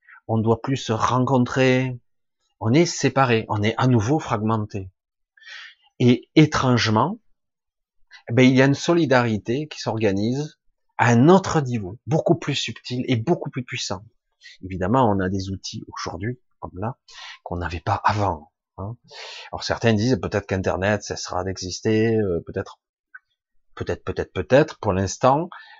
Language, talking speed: French, 145 wpm